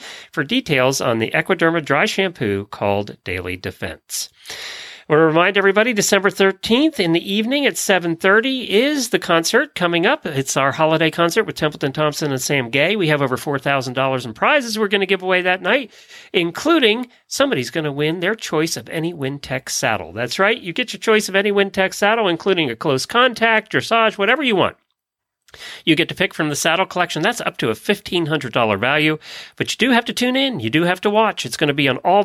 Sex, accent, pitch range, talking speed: male, American, 130-195 Hz, 205 wpm